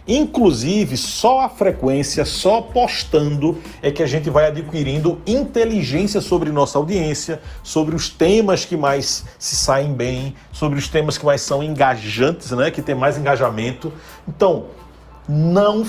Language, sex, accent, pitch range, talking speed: Portuguese, male, Brazilian, 140-200 Hz, 145 wpm